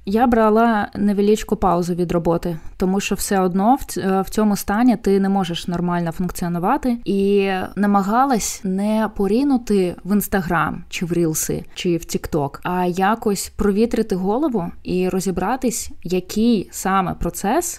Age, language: 20-39, Ukrainian